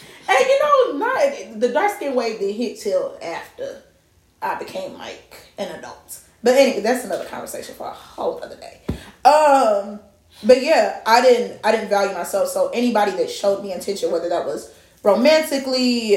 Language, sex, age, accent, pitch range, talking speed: English, female, 20-39, American, 205-270 Hz, 170 wpm